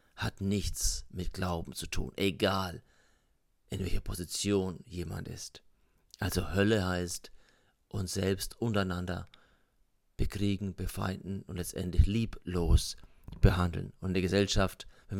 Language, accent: German, German